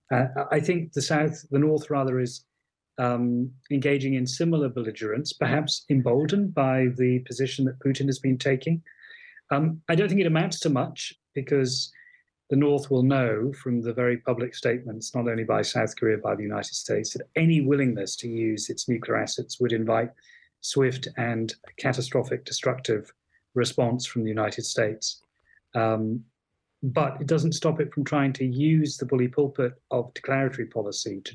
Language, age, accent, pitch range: English, 30-49, British, 125-145 Hz